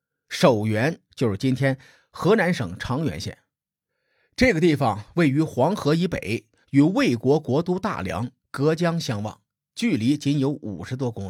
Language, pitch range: Chinese, 115-170 Hz